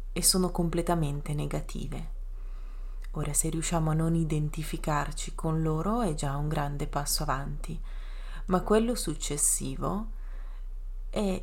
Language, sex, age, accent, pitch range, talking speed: Italian, female, 30-49, native, 155-185 Hz, 110 wpm